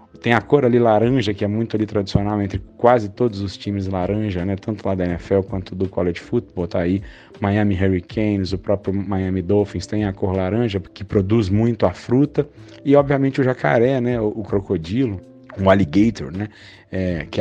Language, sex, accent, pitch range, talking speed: Portuguese, male, Brazilian, 95-110 Hz, 190 wpm